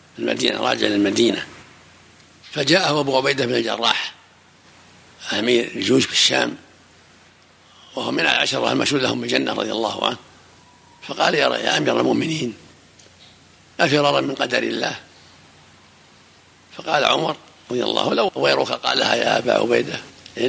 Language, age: Arabic, 60-79